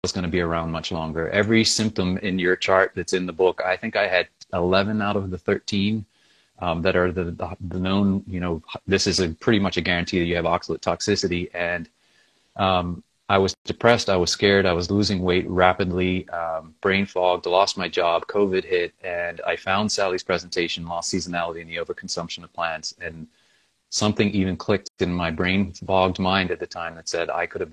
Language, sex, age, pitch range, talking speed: English, male, 30-49, 90-100 Hz, 205 wpm